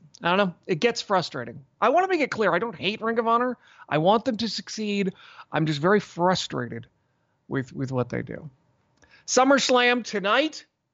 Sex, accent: male, American